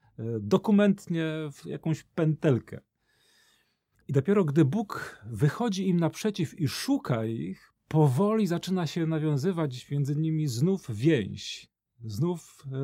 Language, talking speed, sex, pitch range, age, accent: Polish, 105 wpm, male, 125-180 Hz, 40-59, native